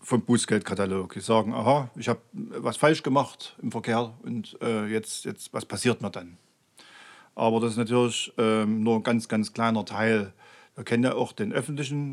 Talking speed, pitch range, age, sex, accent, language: 175 wpm, 110-125 Hz, 50-69, male, German, German